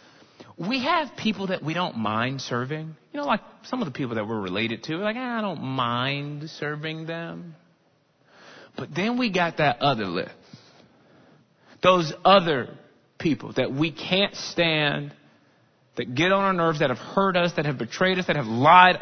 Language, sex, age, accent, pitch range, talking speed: English, male, 30-49, American, 145-210 Hz, 175 wpm